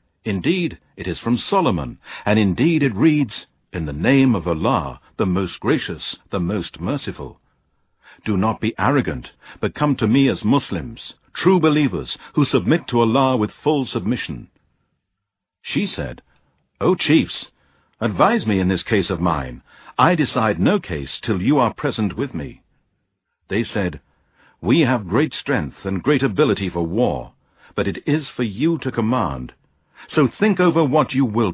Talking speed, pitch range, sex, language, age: 160 wpm, 90-140 Hz, male, English, 60-79